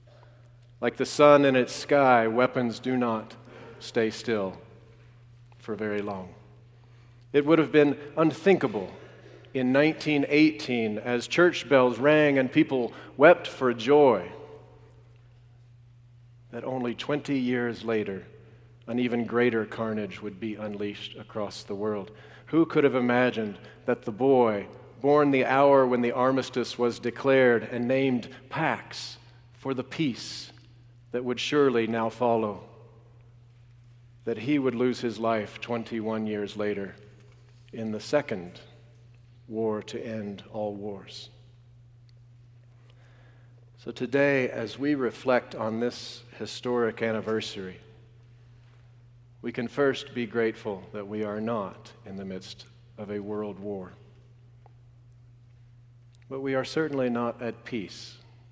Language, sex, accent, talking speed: English, male, American, 125 wpm